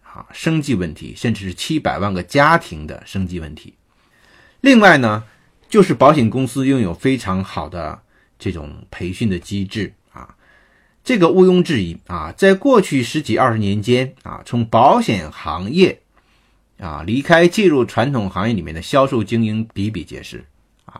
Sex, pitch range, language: male, 95-130 Hz, Chinese